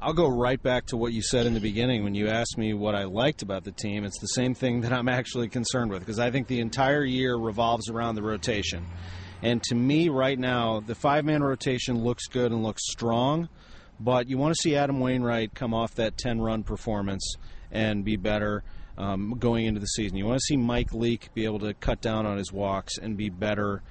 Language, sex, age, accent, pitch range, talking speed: English, male, 30-49, American, 105-125 Hz, 225 wpm